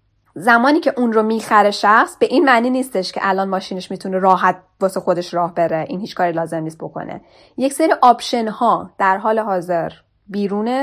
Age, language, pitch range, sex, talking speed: 10-29, Persian, 185-235 Hz, female, 185 wpm